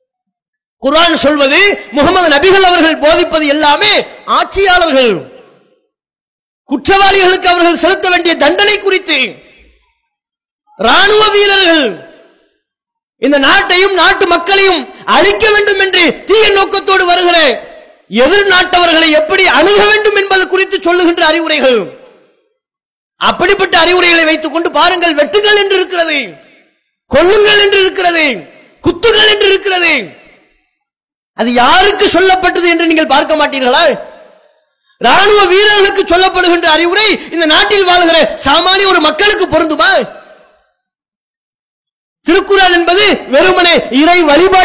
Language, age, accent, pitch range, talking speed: English, 20-39, Indian, 310-390 Hz, 80 wpm